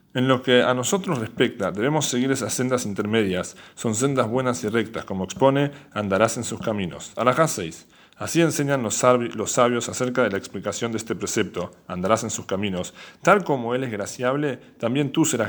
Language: Spanish